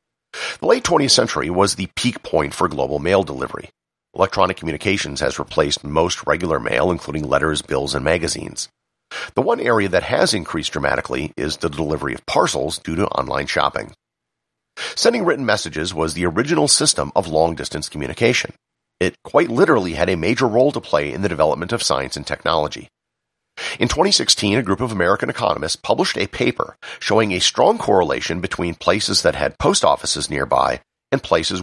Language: English